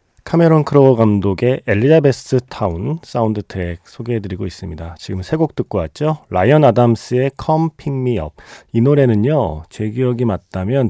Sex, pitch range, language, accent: male, 100-145 Hz, Korean, native